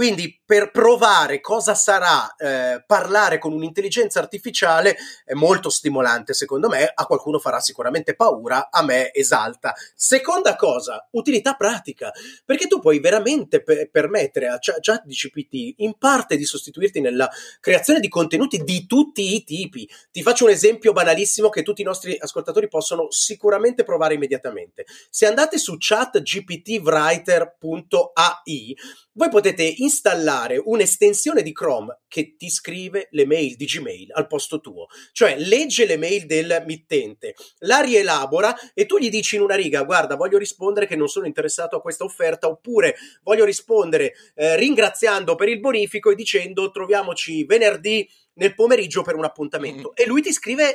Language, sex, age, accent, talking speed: Italian, male, 30-49, native, 150 wpm